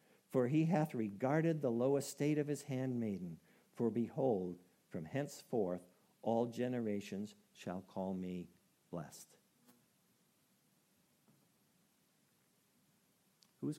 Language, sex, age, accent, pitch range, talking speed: English, male, 50-69, American, 95-150 Hz, 90 wpm